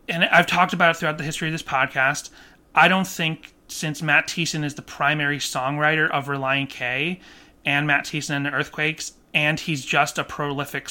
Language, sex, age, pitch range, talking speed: English, male, 30-49, 140-175 Hz, 195 wpm